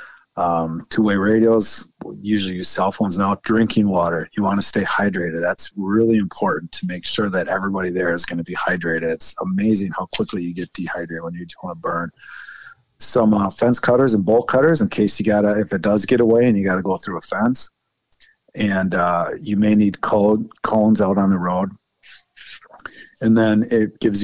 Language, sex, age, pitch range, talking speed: English, male, 40-59, 90-110 Hz, 200 wpm